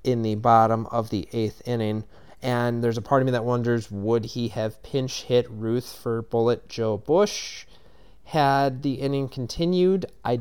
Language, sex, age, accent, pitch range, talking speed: English, male, 30-49, American, 115-130 Hz, 175 wpm